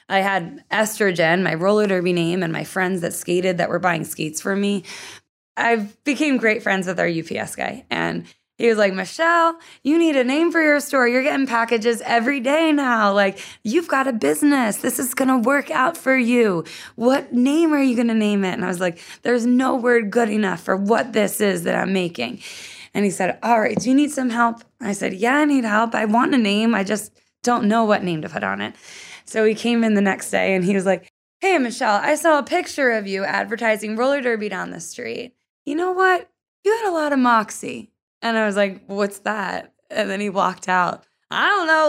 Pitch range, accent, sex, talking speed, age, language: 195-265 Hz, American, female, 230 wpm, 20-39, English